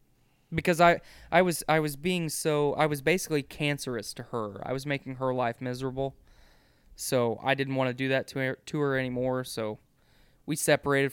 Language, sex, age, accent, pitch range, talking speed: English, male, 20-39, American, 125-145 Hz, 185 wpm